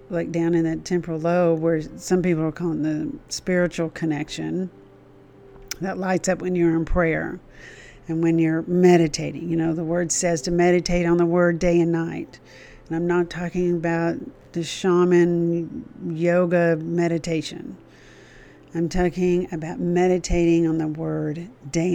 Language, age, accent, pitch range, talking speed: English, 50-69, American, 160-180 Hz, 150 wpm